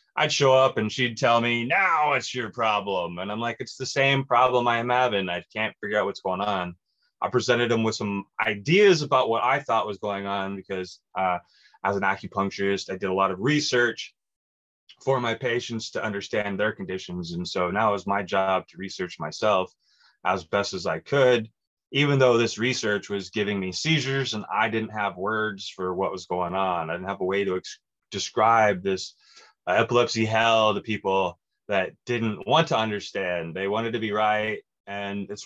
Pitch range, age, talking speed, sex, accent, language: 95-115 Hz, 20-39, 200 wpm, male, American, English